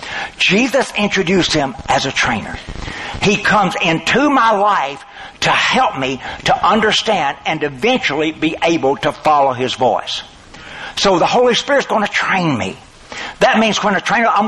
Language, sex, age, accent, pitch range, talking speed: English, male, 60-79, American, 165-210 Hz, 160 wpm